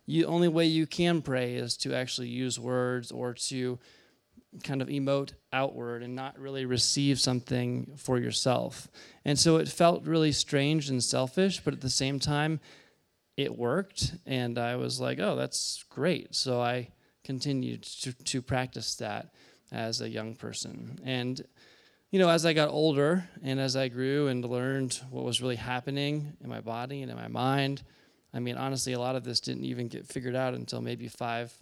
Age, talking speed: 20-39, 180 wpm